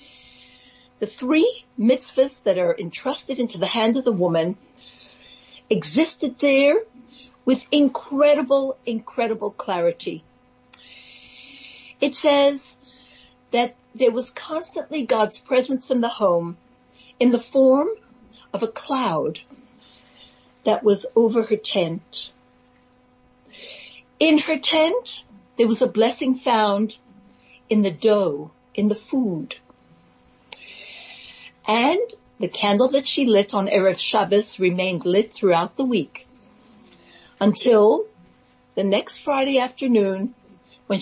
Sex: female